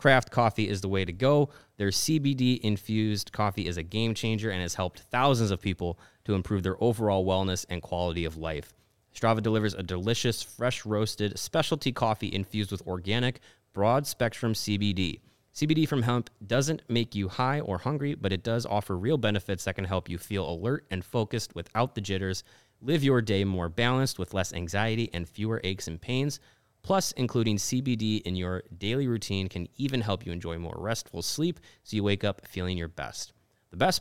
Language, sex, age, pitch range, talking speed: English, male, 30-49, 95-125 Hz, 180 wpm